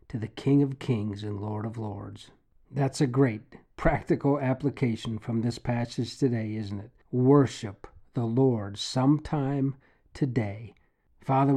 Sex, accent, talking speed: male, American, 135 wpm